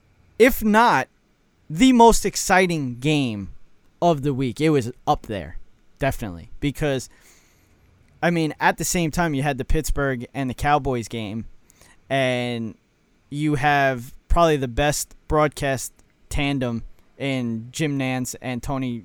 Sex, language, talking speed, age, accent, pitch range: male, English, 130 wpm, 20-39, American, 115-150 Hz